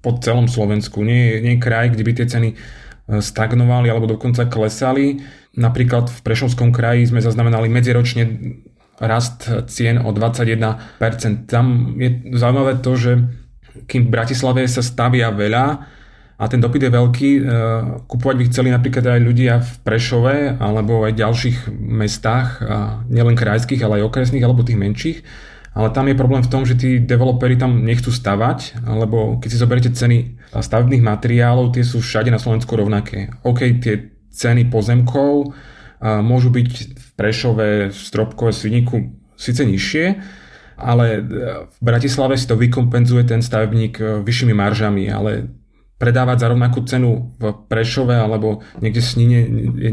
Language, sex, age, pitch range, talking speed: Slovak, male, 30-49, 110-125 Hz, 145 wpm